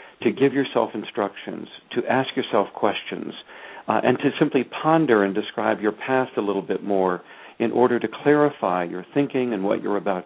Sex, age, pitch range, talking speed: male, 60-79, 100-130 Hz, 180 wpm